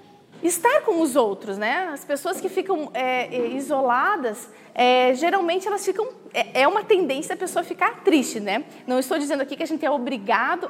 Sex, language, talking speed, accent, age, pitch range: female, Portuguese, 185 wpm, Brazilian, 20-39, 255-345 Hz